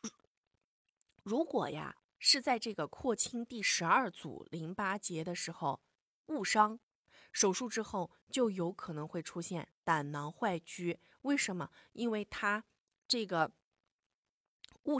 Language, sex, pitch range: Chinese, female, 170-250 Hz